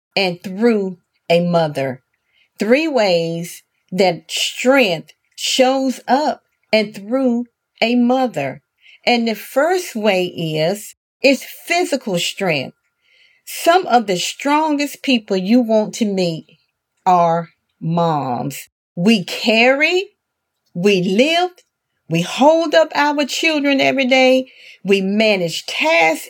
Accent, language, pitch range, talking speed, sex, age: American, English, 190-275 Hz, 105 wpm, female, 40-59